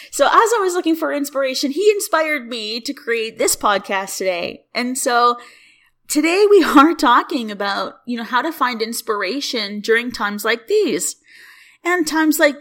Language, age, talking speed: English, 20-39, 165 wpm